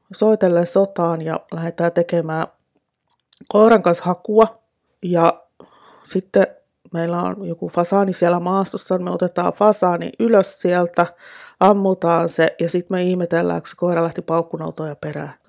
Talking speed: 130 wpm